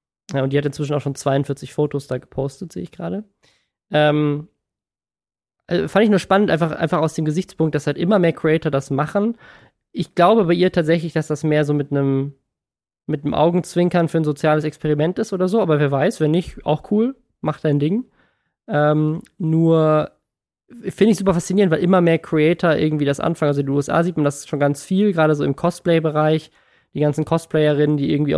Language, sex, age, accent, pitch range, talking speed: German, male, 20-39, German, 145-165 Hz, 200 wpm